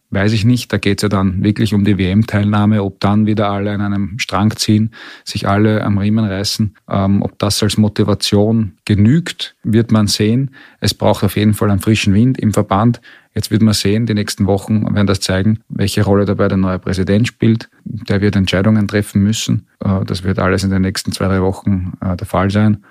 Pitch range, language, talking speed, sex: 95-110 Hz, German, 210 wpm, male